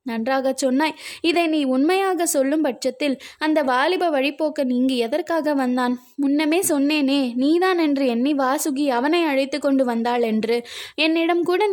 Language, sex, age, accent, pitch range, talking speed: Tamil, female, 20-39, native, 260-310 Hz, 135 wpm